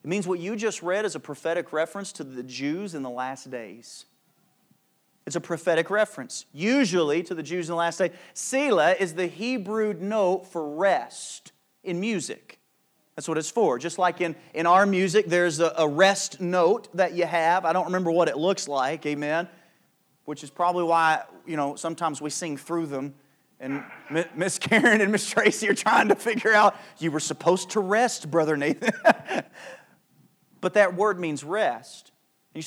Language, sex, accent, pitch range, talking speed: English, male, American, 150-195 Hz, 180 wpm